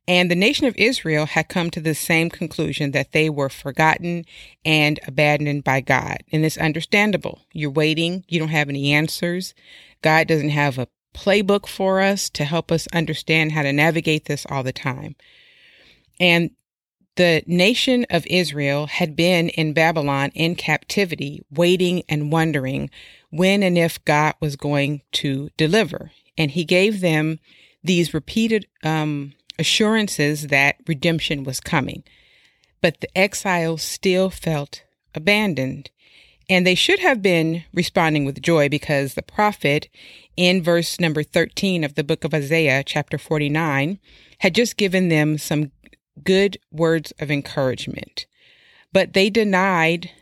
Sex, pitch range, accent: female, 150-180 Hz, American